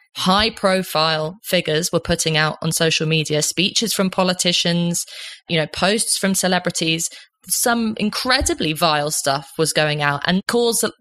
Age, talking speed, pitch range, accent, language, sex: 20-39, 140 wpm, 160-195 Hz, British, English, female